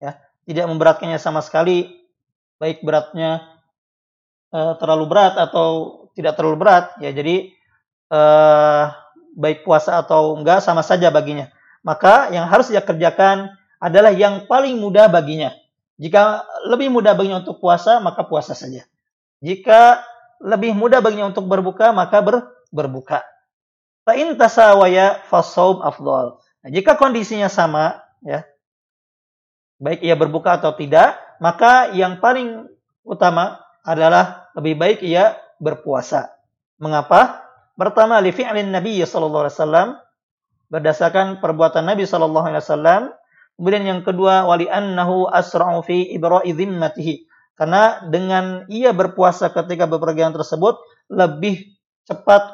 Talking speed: 120 wpm